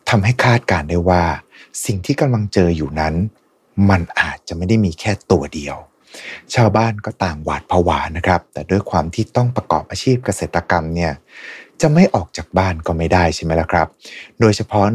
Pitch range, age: 85-110 Hz, 20-39